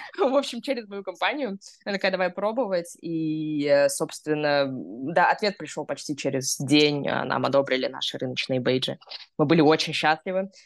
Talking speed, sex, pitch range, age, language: 140 wpm, female, 155-210 Hz, 20-39, Russian